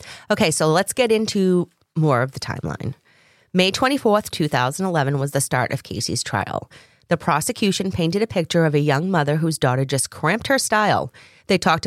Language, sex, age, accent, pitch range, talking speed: English, female, 30-49, American, 145-195 Hz, 175 wpm